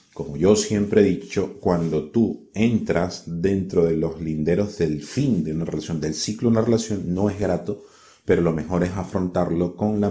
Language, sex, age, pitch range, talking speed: Spanish, male, 30-49, 80-105 Hz, 190 wpm